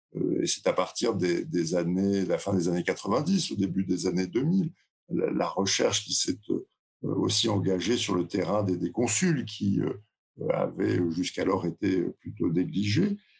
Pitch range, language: 100-145 Hz, French